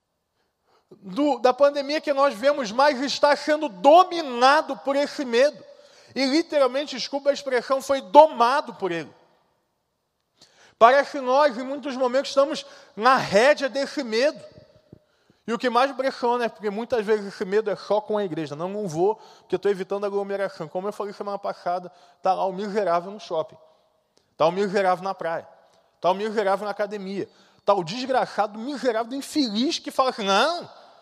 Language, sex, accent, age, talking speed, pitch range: Portuguese, male, Brazilian, 20-39, 170 wpm, 190-275 Hz